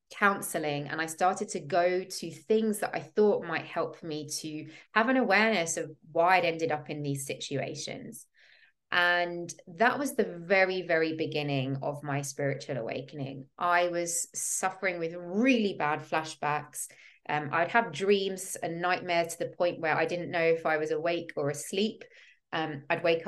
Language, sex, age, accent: English, female, 20-39, British